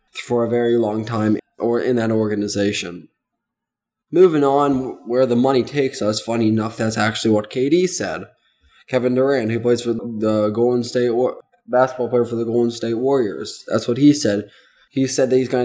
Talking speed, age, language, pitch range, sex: 180 wpm, 20-39, English, 115-125 Hz, male